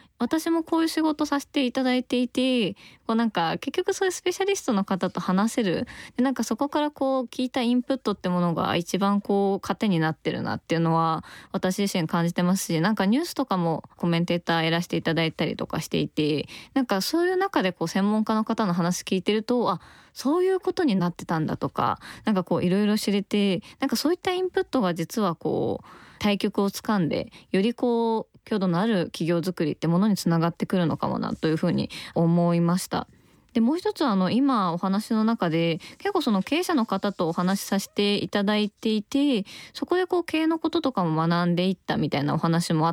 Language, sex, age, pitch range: Japanese, female, 20-39, 175-260 Hz